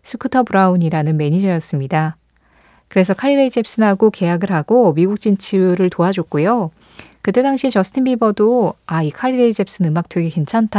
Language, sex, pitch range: Korean, female, 165-245 Hz